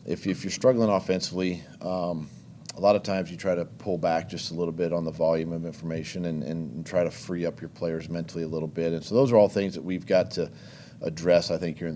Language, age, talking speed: English, 40-59, 255 wpm